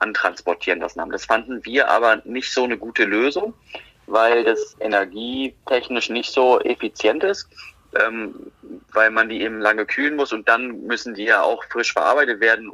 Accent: German